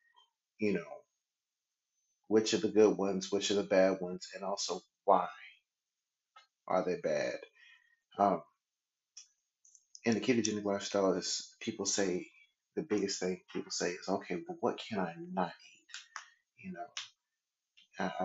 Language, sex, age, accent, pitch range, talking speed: English, male, 30-49, American, 100-165 Hz, 135 wpm